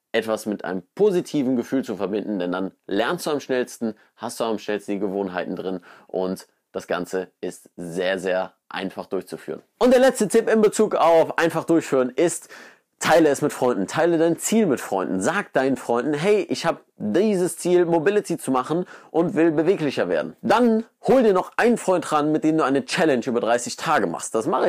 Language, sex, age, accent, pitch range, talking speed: German, male, 30-49, German, 115-180 Hz, 195 wpm